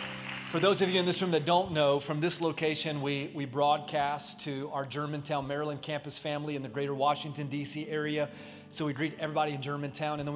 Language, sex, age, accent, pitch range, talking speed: English, male, 30-49, American, 145-170 Hz, 210 wpm